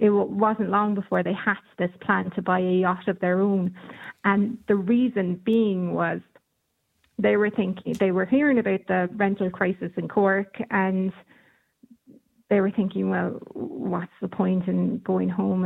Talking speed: 165 wpm